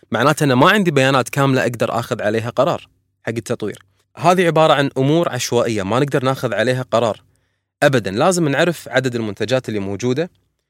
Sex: male